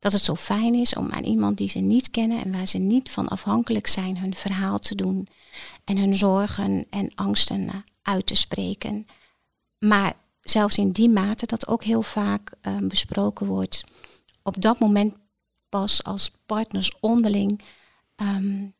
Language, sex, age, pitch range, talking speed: Dutch, female, 40-59, 190-220 Hz, 165 wpm